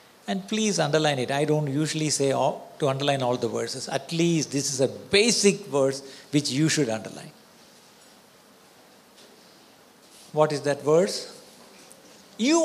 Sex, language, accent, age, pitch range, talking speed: male, Malayalam, native, 60-79, 135-215 Hz, 140 wpm